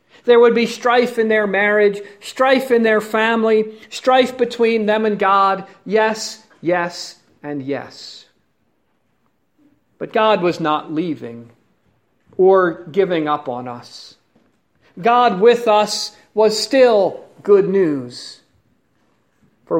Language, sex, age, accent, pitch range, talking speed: English, male, 50-69, American, 185-240 Hz, 115 wpm